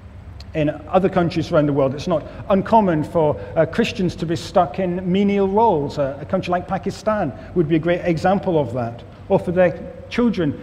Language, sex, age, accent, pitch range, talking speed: English, male, 50-69, British, 140-190 Hz, 190 wpm